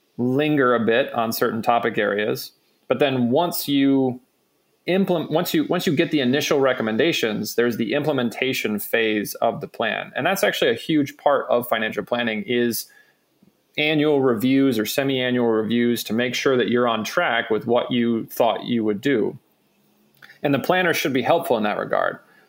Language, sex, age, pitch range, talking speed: English, male, 30-49, 115-140 Hz, 175 wpm